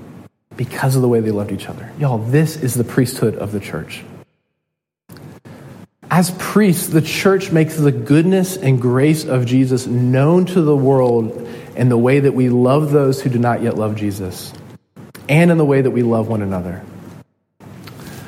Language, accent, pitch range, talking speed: English, American, 120-155 Hz, 175 wpm